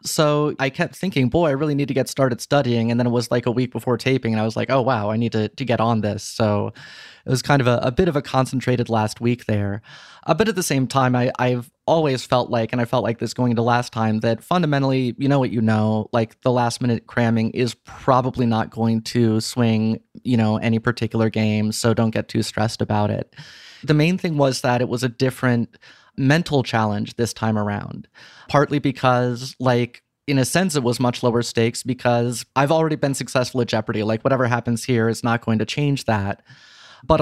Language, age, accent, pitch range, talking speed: English, 20-39, American, 115-135 Hz, 225 wpm